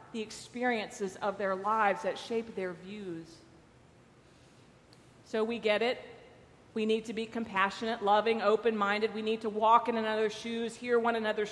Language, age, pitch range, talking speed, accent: English, 40-59, 210-255 Hz, 155 wpm, American